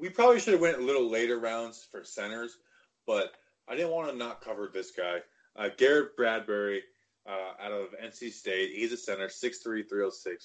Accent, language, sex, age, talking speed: American, English, male, 20-39, 190 wpm